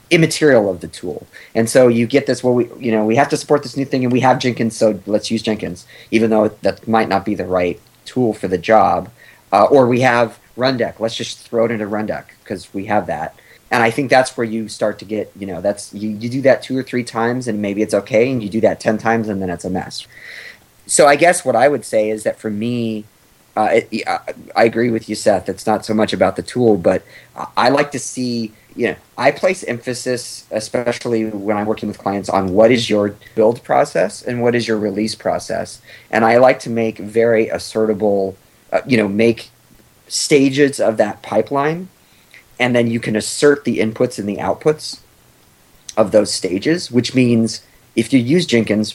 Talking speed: 220 wpm